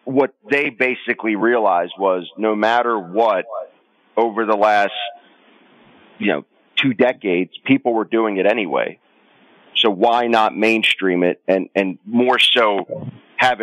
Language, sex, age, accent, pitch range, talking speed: English, male, 40-59, American, 95-115 Hz, 130 wpm